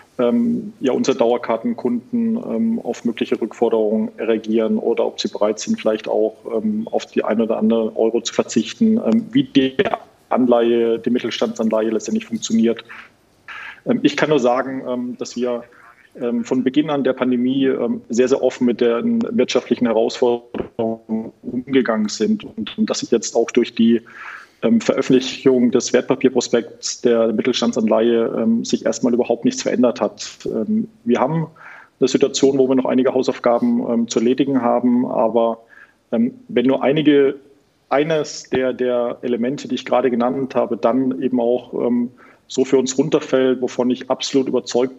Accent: German